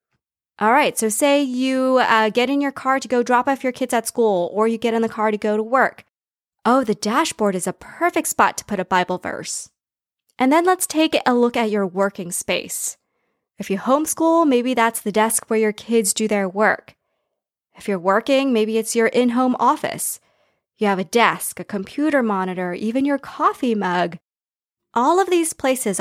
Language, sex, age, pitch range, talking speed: English, female, 20-39, 200-255 Hz, 200 wpm